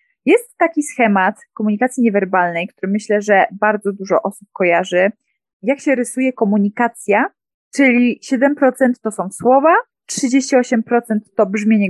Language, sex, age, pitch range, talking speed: Polish, female, 20-39, 205-265 Hz, 120 wpm